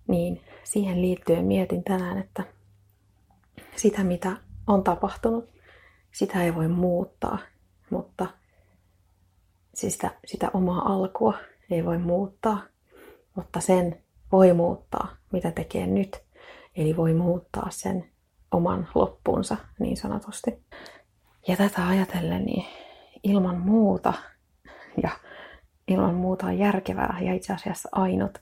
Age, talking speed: 30-49, 110 wpm